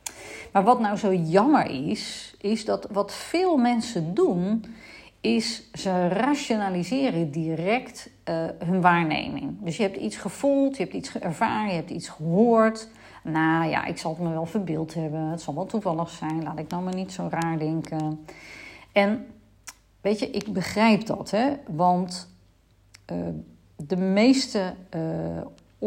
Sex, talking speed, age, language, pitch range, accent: female, 150 wpm, 40-59, Dutch, 165-220 Hz, Dutch